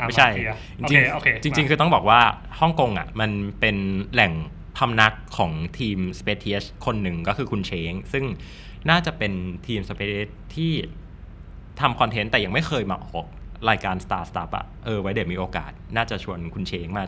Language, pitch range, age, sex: Thai, 90-125 Hz, 20-39, male